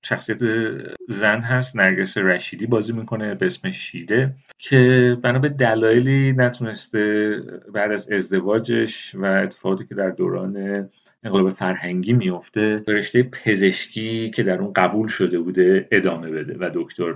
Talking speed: 130 wpm